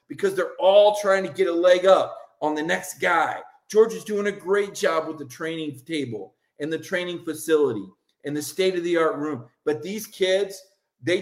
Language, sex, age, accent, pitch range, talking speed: English, male, 40-59, American, 140-195 Hz, 185 wpm